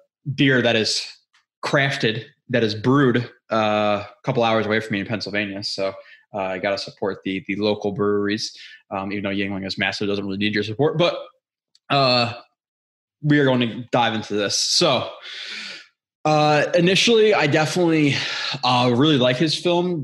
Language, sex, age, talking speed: English, male, 20-39, 170 wpm